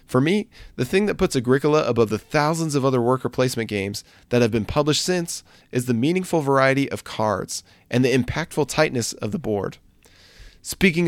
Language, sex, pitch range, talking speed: English, male, 115-150 Hz, 185 wpm